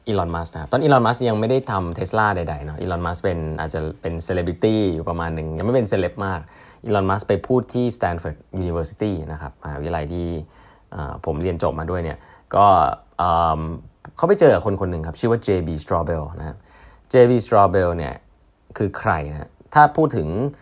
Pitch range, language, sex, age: 85-110 Hz, Thai, male, 20-39